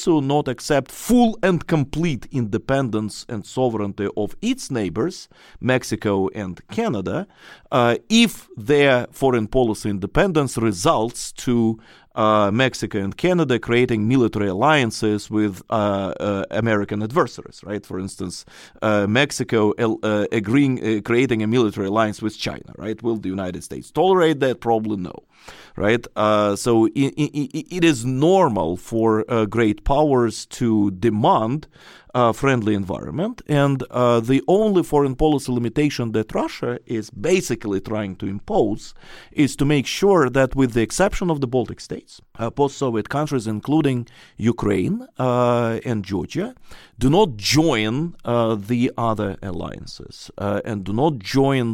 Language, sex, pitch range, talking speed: English, male, 105-135 Hz, 140 wpm